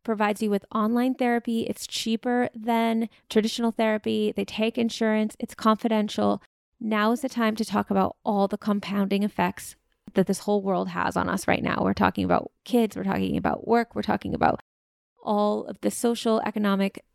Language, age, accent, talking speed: English, 20-39, American, 180 wpm